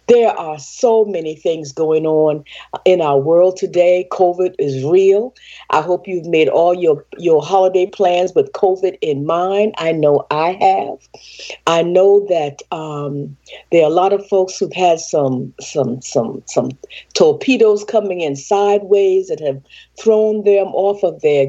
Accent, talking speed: American, 160 wpm